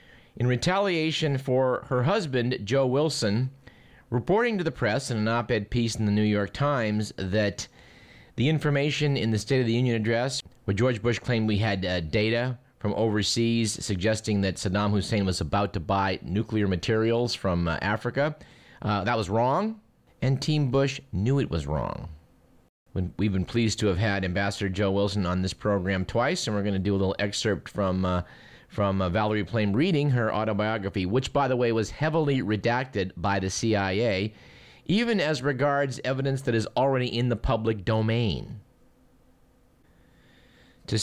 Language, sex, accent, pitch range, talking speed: English, male, American, 100-130 Hz, 170 wpm